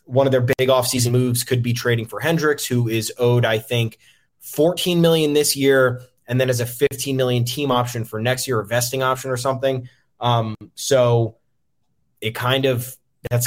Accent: American